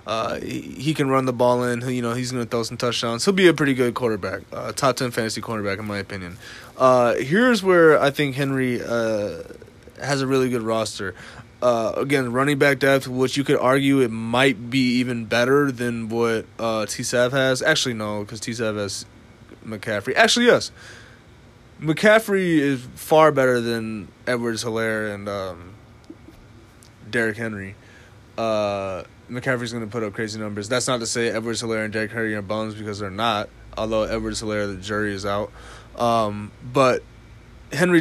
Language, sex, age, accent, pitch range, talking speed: English, male, 20-39, American, 110-130 Hz, 175 wpm